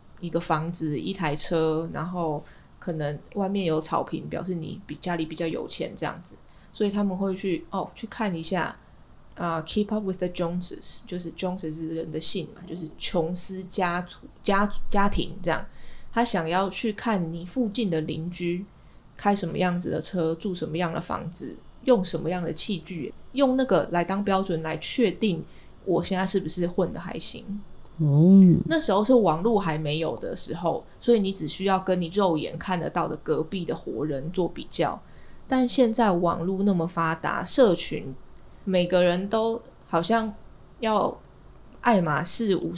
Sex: female